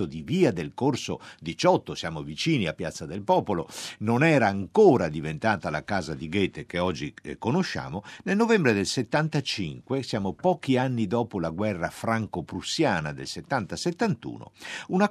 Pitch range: 85-130 Hz